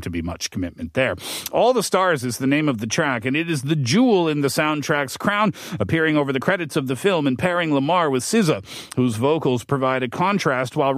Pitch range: 130-170 Hz